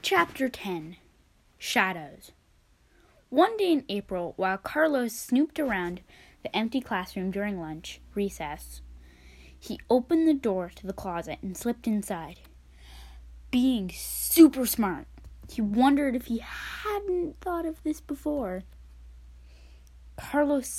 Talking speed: 115 wpm